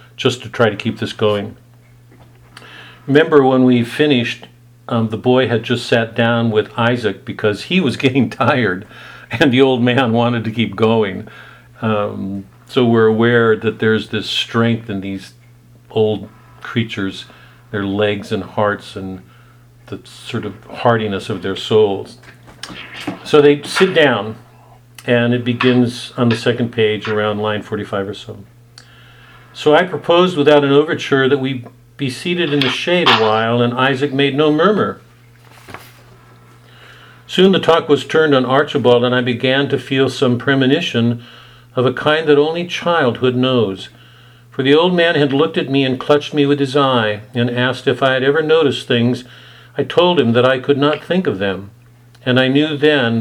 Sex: male